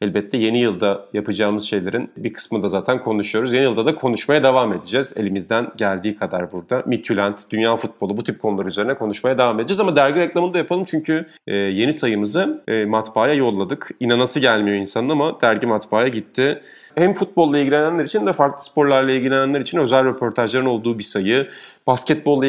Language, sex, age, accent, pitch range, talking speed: Turkish, male, 40-59, native, 110-140 Hz, 165 wpm